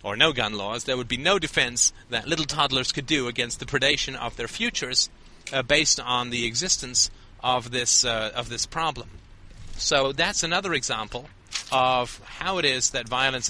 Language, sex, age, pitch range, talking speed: English, male, 30-49, 115-155 Hz, 180 wpm